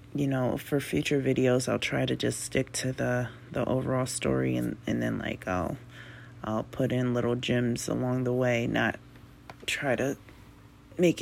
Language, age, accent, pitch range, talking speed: English, 30-49, American, 120-145 Hz, 170 wpm